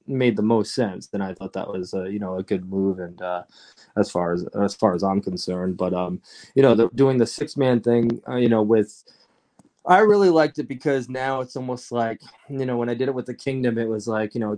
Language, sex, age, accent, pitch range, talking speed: English, male, 20-39, American, 100-120 Hz, 255 wpm